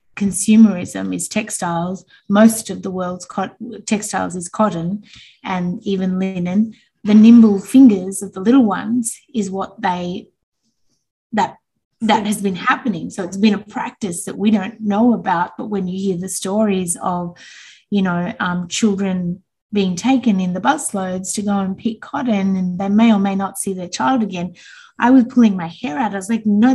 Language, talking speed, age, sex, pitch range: English, 180 wpm, 20-39, female, 180-220 Hz